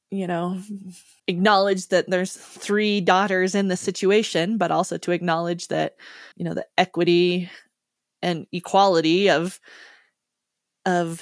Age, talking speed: 20-39, 125 wpm